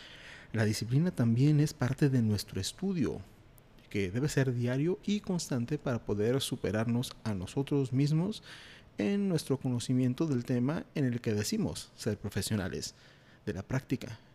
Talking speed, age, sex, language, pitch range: 140 wpm, 40-59, male, Spanish, 105-135 Hz